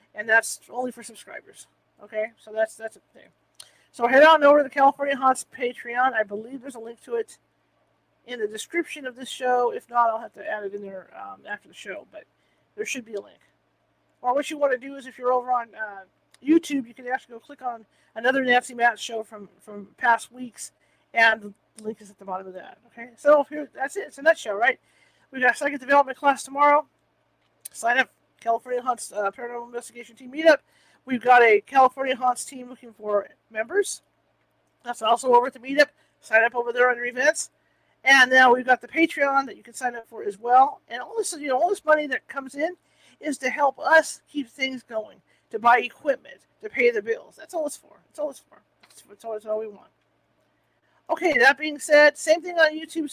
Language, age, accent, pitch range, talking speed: English, 40-59, American, 230-290 Hz, 220 wpm